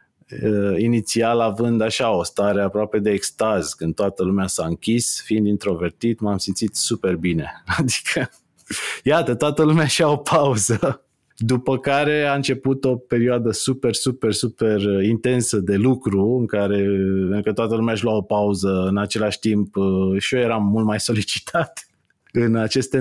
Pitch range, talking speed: 100-125 Hz, 150 wpm